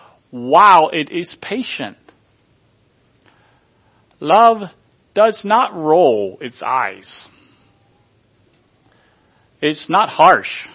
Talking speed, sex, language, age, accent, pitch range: 75 wpm, male, English, 40-59, American, 115-150 Hz